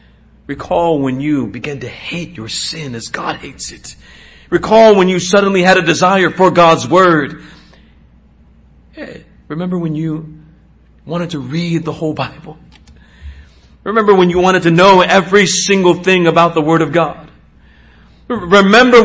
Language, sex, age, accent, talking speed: English, male, 40-59, American, 150 wpm